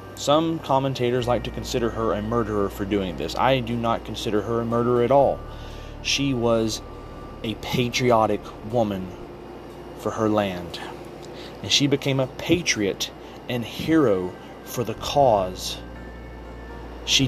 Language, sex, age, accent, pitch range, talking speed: English, male, 30-49, American, 100-130 Hz, 135 wpm